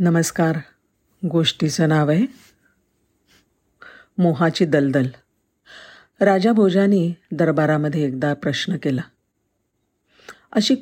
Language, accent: Marathi, native